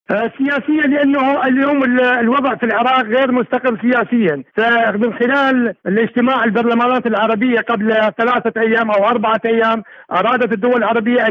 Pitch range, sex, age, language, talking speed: 225-260 Hz, male, 50-69, Arabic, 120 wpm